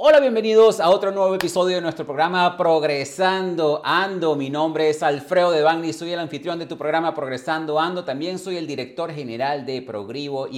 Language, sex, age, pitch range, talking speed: Spanish, male, 40-59, 130-180 Hz, 185 wpm